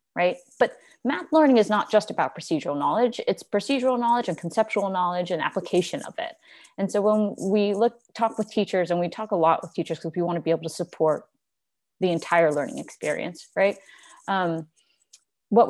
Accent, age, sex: American, 30-49, female